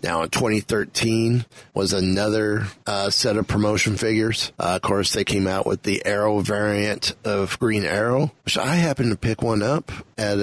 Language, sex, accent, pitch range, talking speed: English, male, American, 100-120 Hz, 180 wpm